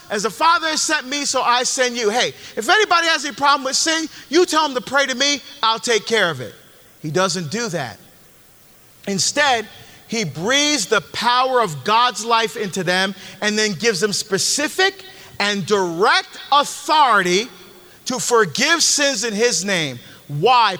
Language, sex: English, male